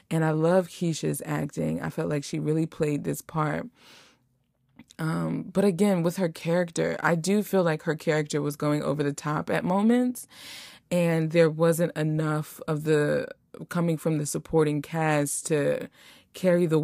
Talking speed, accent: 165 wpm, American